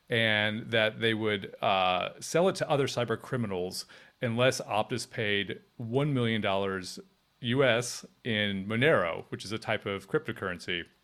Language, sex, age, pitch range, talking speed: English, male, 30-49, 105-130 Hz, 135 wpm